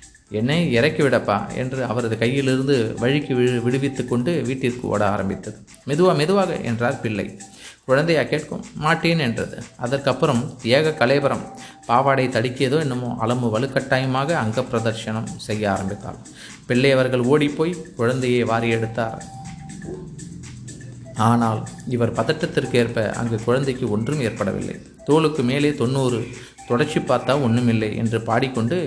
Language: Tamil